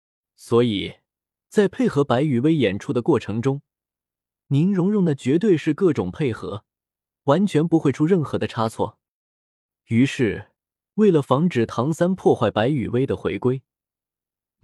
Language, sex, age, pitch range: Chinese, male, 20-39, 115-160 Hz